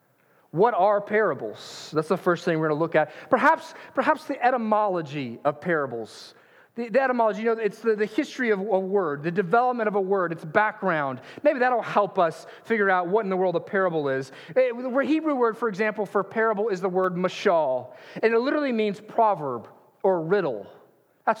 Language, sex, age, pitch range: English, male, 40-59, 185-240 Hz